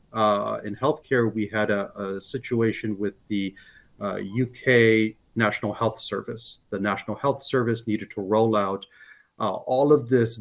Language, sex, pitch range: English, male, 105-125 Hz